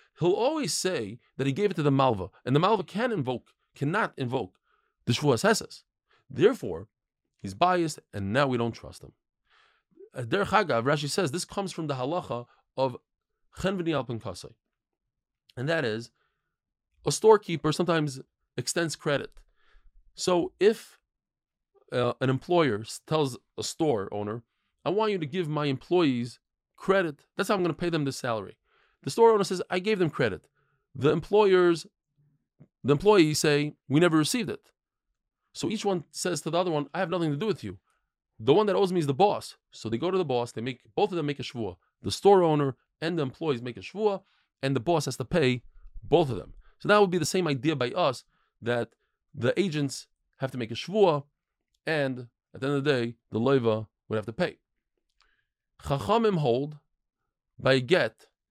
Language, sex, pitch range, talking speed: English, male, 125-180 Hz, 185 wpm